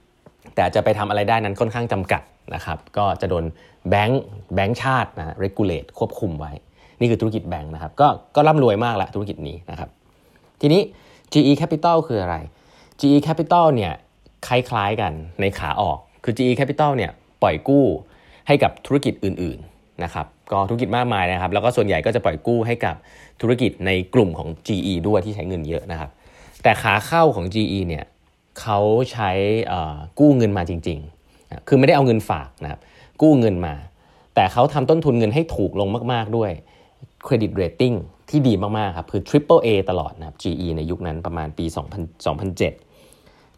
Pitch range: 85-125 Hz